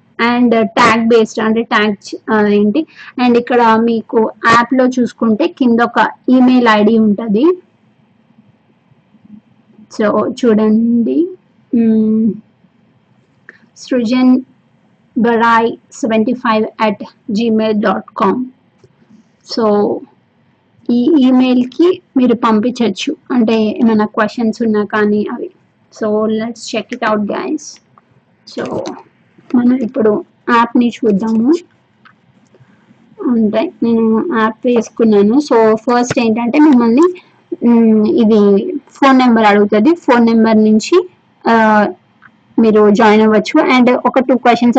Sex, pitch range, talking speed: female, 215-250 Hz, 90 wpm